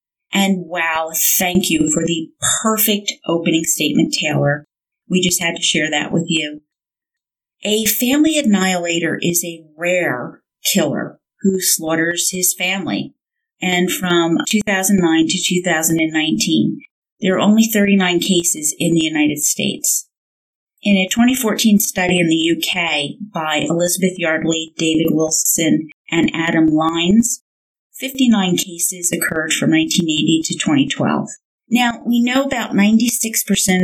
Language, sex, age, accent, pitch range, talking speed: English, female, 30-49, American, 165-210 Hz, 125 wpm